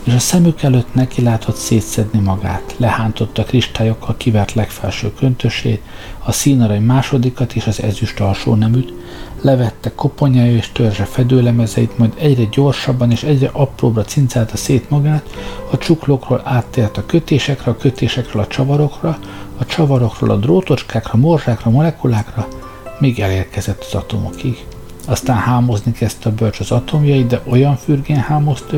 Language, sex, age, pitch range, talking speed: Hungarian, male, 60-79, 110-135 Hz, 140 wpm